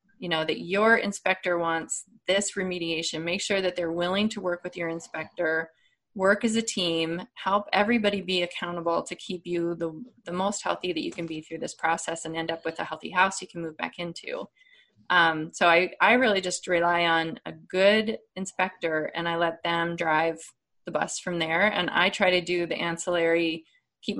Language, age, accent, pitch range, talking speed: English, 20-39, American, 165-200 Hz, 200 wpm